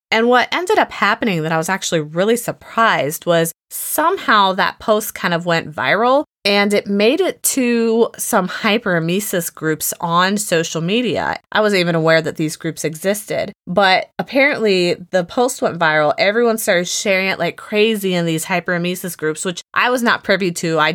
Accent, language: American, English